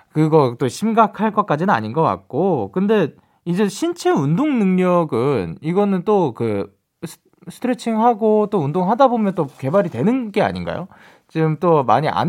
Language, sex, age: Korean, male, 20-39